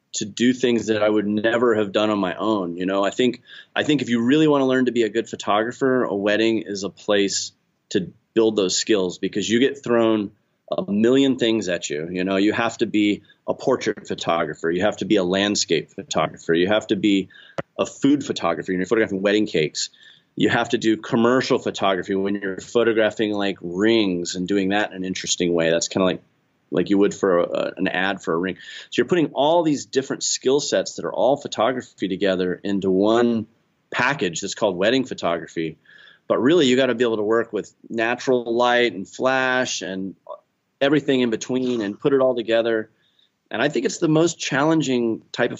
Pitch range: 95-120 Hz